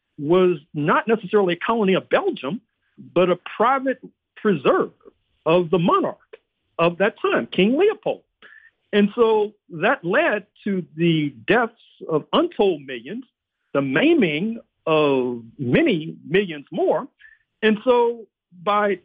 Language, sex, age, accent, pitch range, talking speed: English, male, 50-69, American, 155-215 Hz, 120 wpm